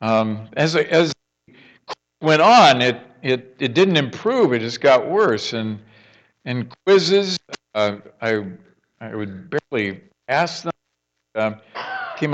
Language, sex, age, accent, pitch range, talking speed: English, male, 50-69, American, 95-125 Hz, 125 wpm